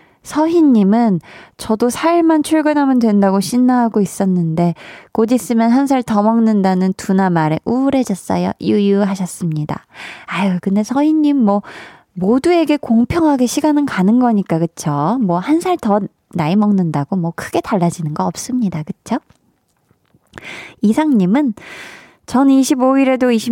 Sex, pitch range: female, 175-235 Hz